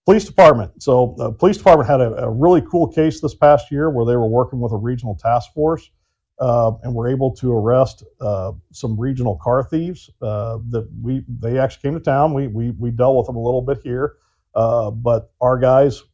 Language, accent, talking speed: English, American, 210 wpm